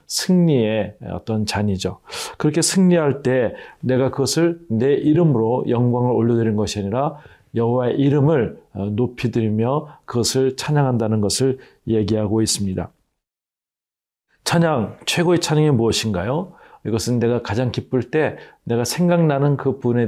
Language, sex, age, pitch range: Korean, male, 40-59, 115-150 Hz